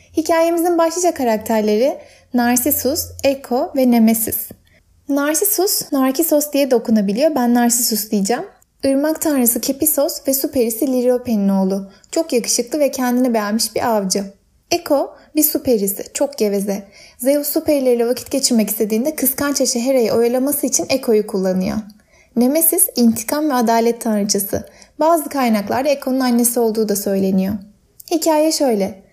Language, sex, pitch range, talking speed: Turkish, female, 225-295 Hz, 130 wpm